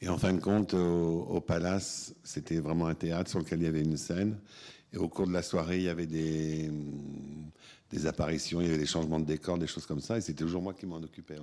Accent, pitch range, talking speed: French, 80-90 Hz, 255 wpm